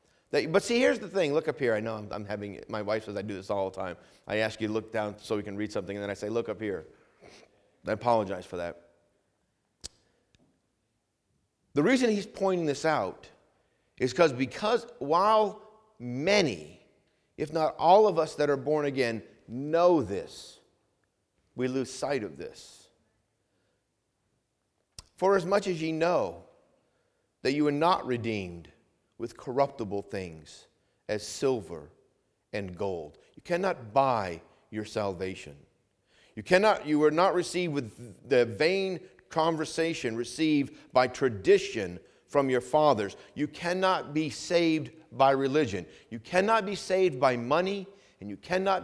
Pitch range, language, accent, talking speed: 110-175 Hz, English, American, 155 wpm